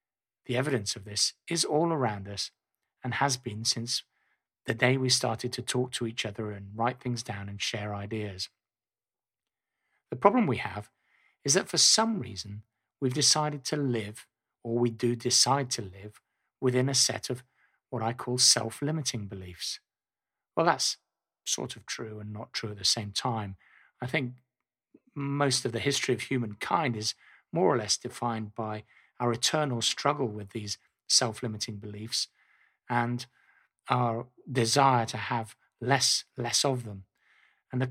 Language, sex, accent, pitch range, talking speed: English, male, British, 110-130 Hz, 160 wpm